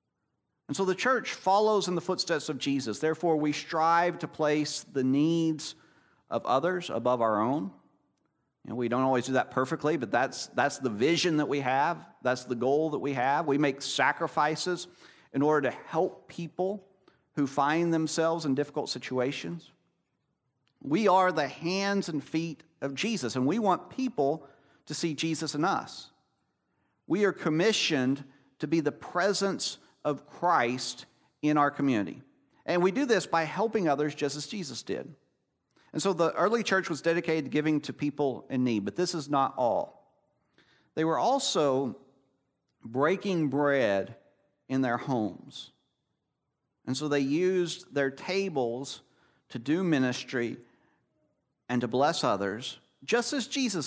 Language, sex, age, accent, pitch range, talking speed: English, male, 50-69, American, 135-170 Hz, 155 wpm